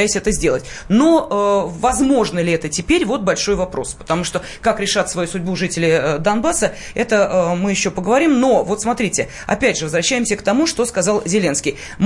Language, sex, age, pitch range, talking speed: Russian, female, 30-49, 175-230 Hz, 180 wpm